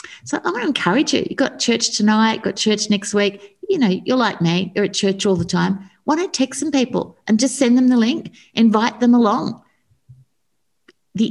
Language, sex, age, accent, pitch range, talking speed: English, female, 50-69, Australian, 160-235 Hz, 220 wpm